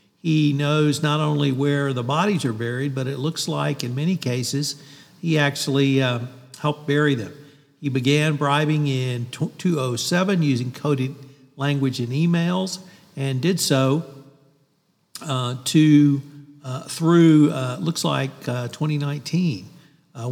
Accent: American